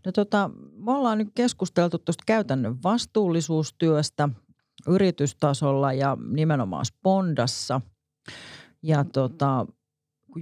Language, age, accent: Finnish, 40-59, native